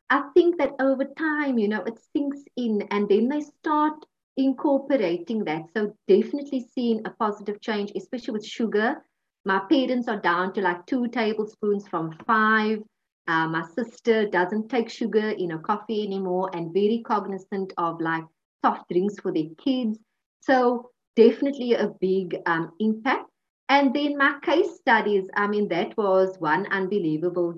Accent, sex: Indian, female